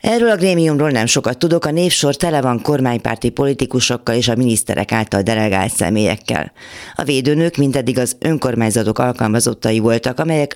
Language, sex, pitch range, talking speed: Hungarian, female, 110-140 Hz, 150 wpm